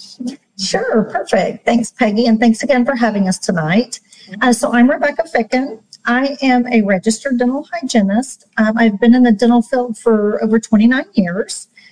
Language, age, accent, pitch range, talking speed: English, 40-59, American, 215-255 Hz, 165 wpm